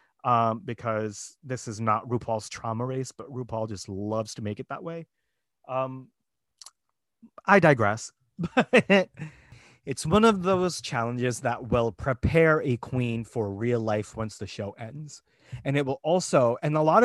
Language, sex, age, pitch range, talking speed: English, male, 30-49, 115-145 Hz, 155 wpm